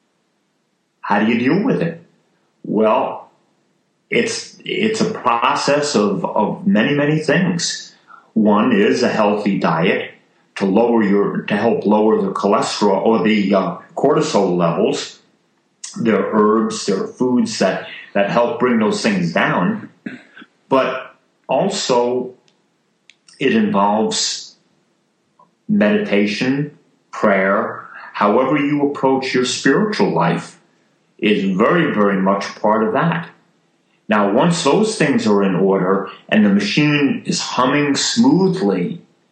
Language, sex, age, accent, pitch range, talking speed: English, male, 40-59, American, 110-165 Hz, 120 wpm